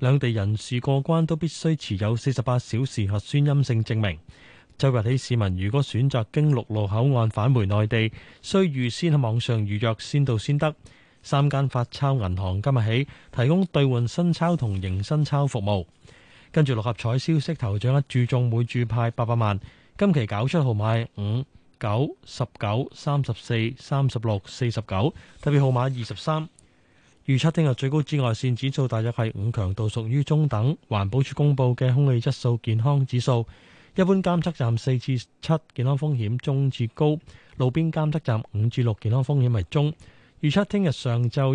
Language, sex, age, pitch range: Chinese, male, 20-39, 115-145 Hz